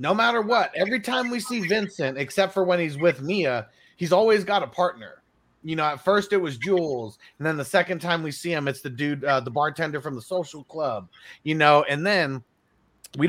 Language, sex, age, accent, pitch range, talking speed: English, male, 30-49, American, 135-185 Hz, 220 wpm